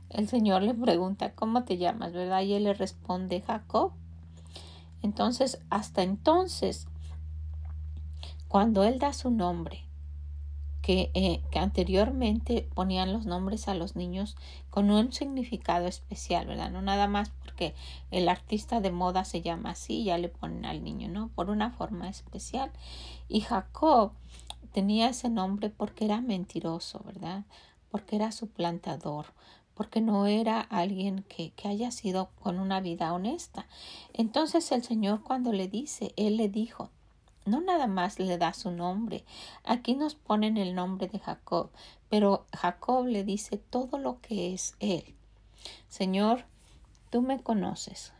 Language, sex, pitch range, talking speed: Spanish, female, 175-220 Hz, 145 wpm